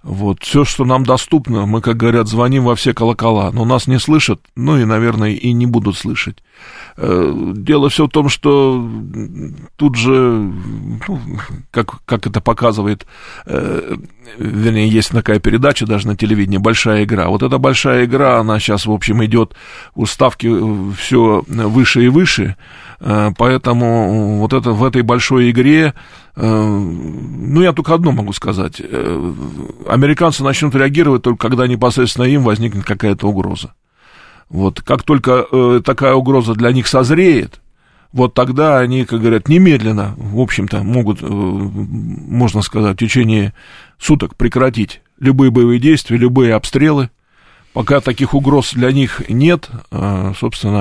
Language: Russian